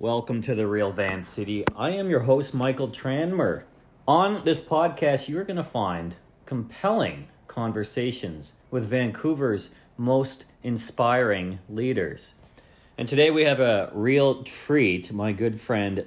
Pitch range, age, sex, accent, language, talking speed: 100-130 Hz, 40-59, male, American, English, 135 wpm